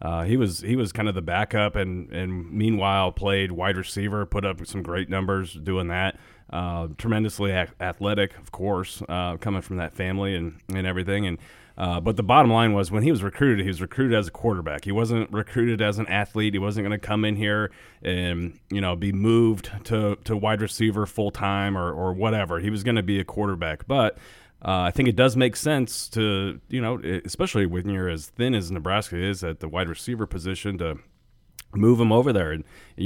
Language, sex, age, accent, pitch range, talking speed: English, male, 30-49, American, 90-105 Hz, 210 wpm